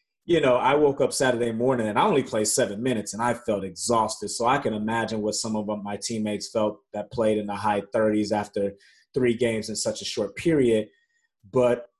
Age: 30-49